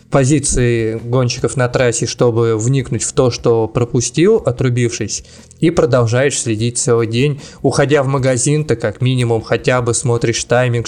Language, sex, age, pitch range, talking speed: Russian, male, 20-39, 120-155 Hz, 145 wpm